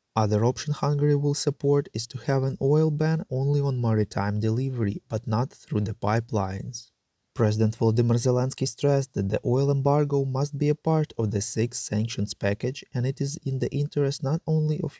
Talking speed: 185 wpm